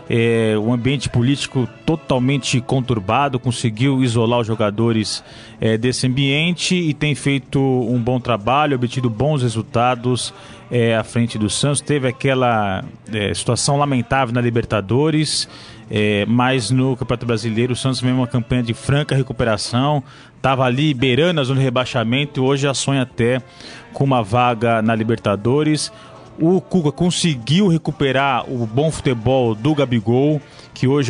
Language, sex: Portuguese, male